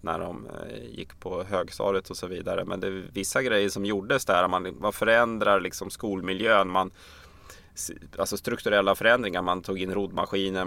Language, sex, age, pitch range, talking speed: English, male, 20-39, 85-100 Hz, 155 wpm